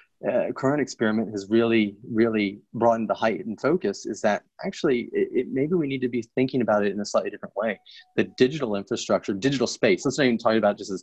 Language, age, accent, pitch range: English, 30-49, American, 105-120 Hz